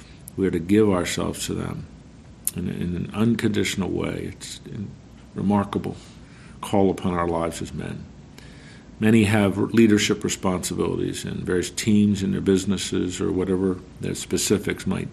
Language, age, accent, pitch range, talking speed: English, 50-69, American, 95-110 Hz, 145 wpm